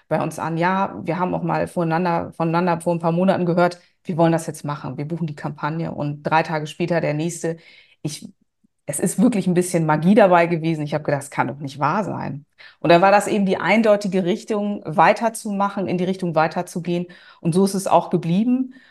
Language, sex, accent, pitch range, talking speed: German, female, German, 155-190 Hz, 210 wpm